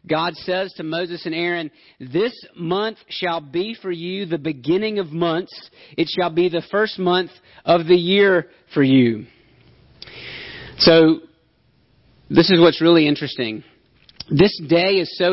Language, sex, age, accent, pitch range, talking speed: English, male, 40-59, American, 165-195 Hz, 145 wpm